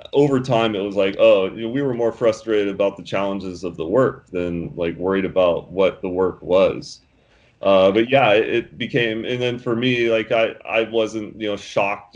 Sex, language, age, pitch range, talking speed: male, English, 30-49, 100-125 Hz, 205 wpm